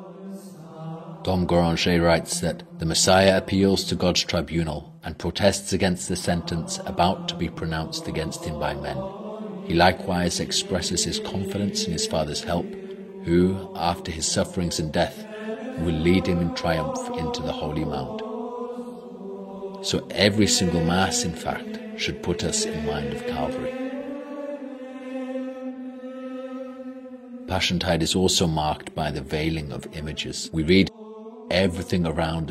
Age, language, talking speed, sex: 40-59, English, 135 wpm, male